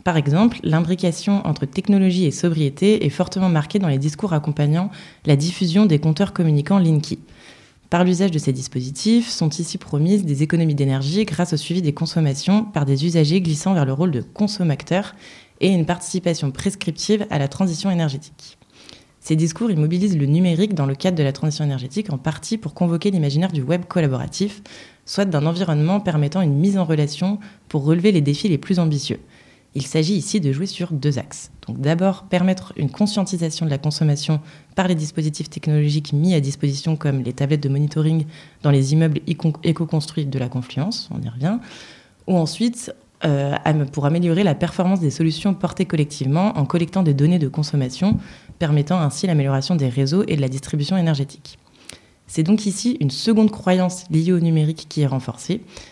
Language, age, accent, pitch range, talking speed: French, 20-39, French, 145-185 Hz, 175 wpm